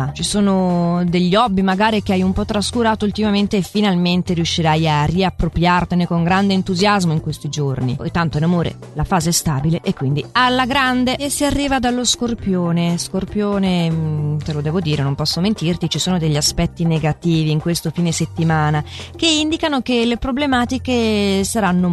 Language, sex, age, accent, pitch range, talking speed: Italian, female, 30-49, native, 165-225 Hz, 170 wpm